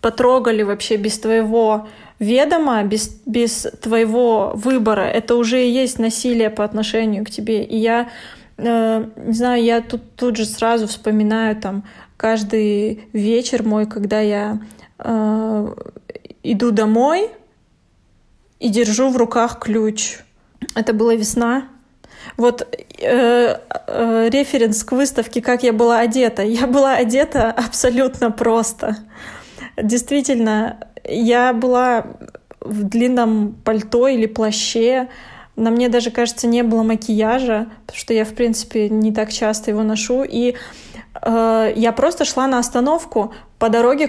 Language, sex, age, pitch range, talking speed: Russian, female, 20-39, 220-250 Hz, 130 wpm